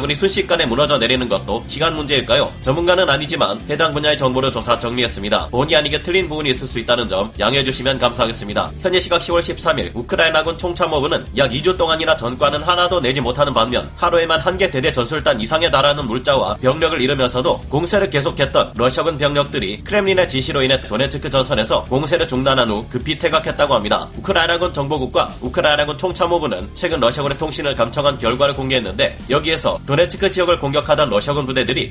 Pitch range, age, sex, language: 130-165 Hz, 30-49, male, Korean